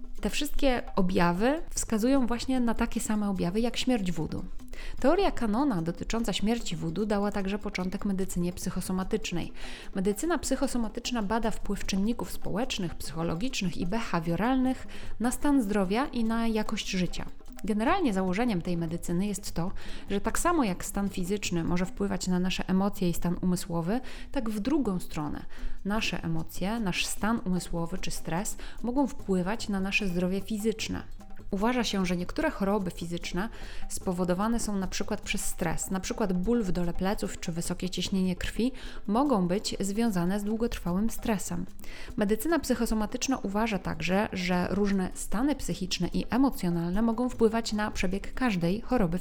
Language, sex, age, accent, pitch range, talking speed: Polish, female, 30-49, native, 180-230 Hz, 145 wpm